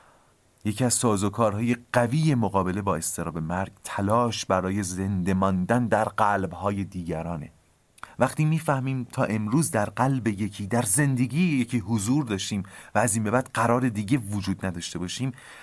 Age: 30-49